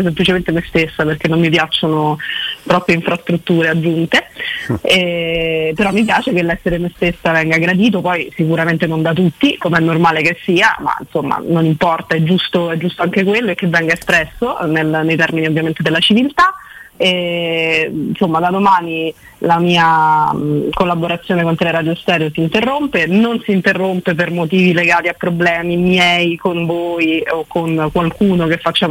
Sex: female